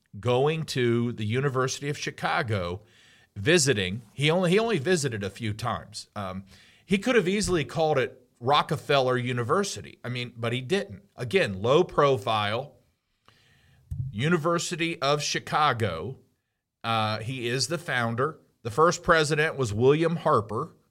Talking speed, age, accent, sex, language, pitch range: 130 wpm, 40-59, American, male, English, 110-145 Hz